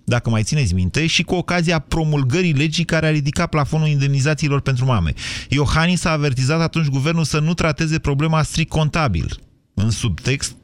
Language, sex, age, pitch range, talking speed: Romanian, male, 30-49, 100-135 Hz, 165 wpm